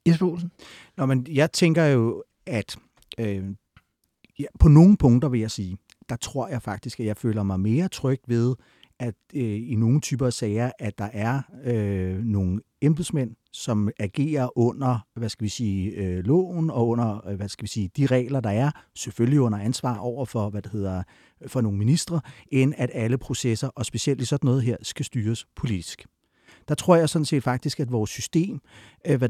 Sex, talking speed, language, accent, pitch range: male, 170 wpm, Danish, native, 115-150 Hz